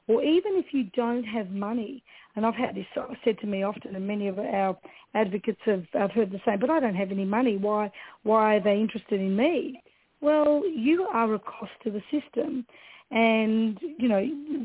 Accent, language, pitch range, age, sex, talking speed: Australian, English, 210-260 Hz, 40-59, female, 200 wpm